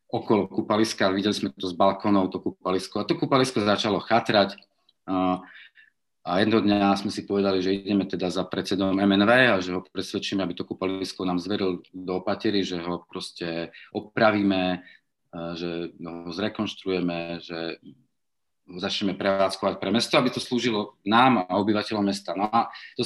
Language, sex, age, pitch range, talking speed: Slovak, male, 40-59, 95-115 Hz, 155 wpm